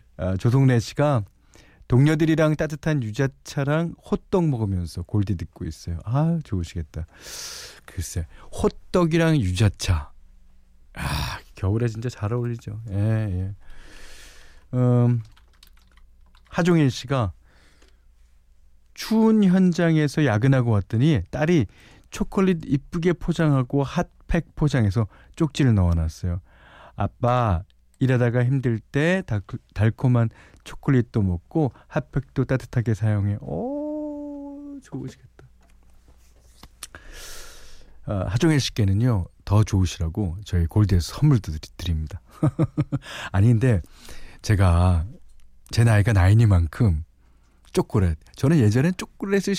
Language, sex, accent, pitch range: Korean, male, native, 85-145 Hz